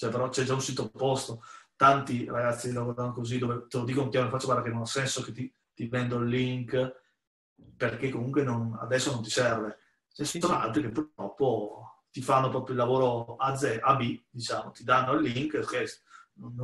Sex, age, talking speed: male, 30-49, 200 wpm